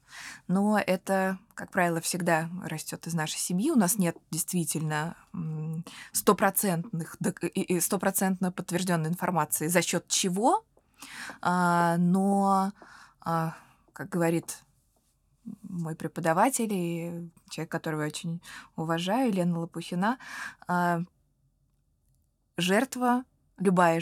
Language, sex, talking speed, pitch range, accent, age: Russian, female, 85 wpm, 165-195 Hz, native, 20-39